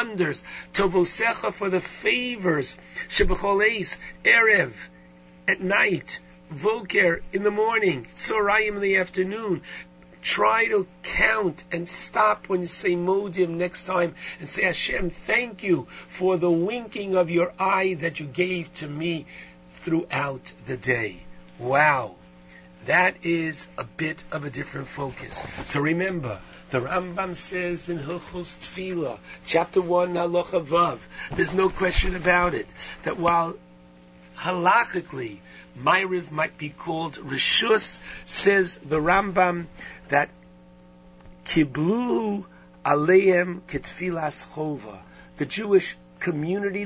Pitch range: 150-190 Hz